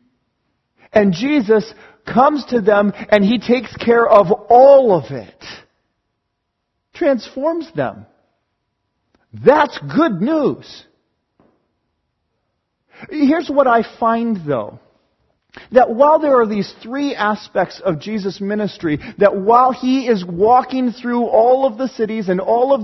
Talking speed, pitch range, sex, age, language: 120 wpm, 175-255 Hz, male, 40-59, English